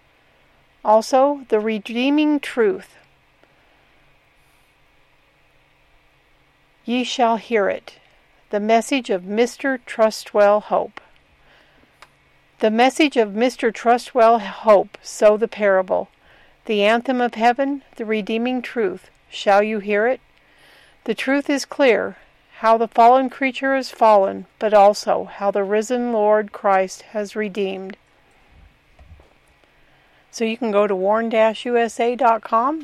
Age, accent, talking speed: 50-69, American, 110 wpm